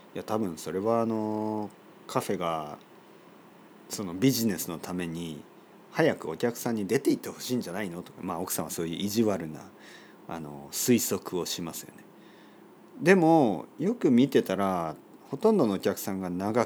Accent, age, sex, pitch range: native, 40-59, male, 90-150 Hz